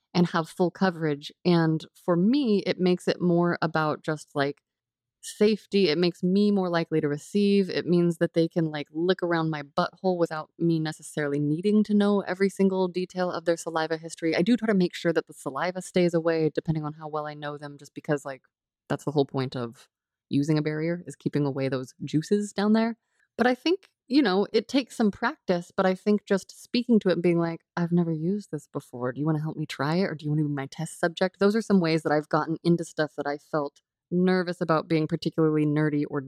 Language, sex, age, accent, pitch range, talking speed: English, female, 20-39, American, 155-195 Hz, 230 wpm